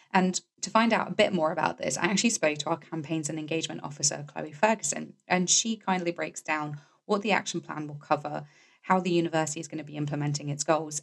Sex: female